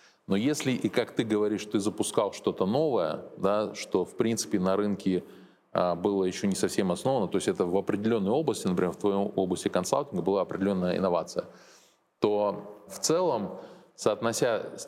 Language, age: Russian, 20-39